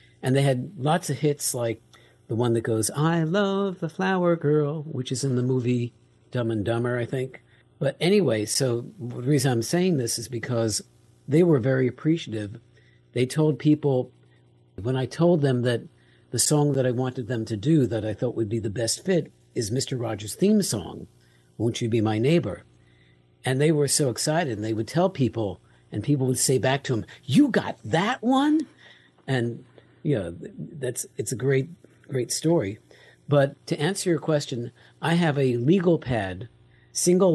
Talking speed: 185 wpm